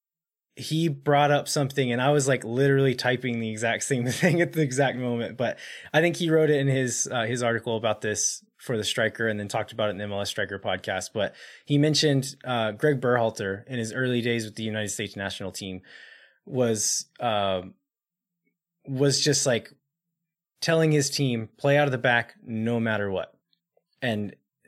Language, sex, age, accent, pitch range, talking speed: English, male, 20-39, American, 110-145 Hz, 185 wpm